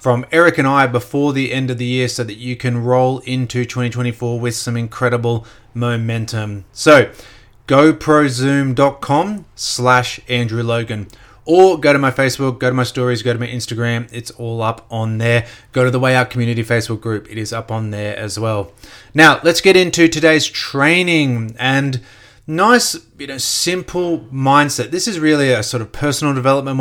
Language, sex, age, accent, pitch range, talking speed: English, male, 30-49, Australian, 115-140 Hz, 175 wpm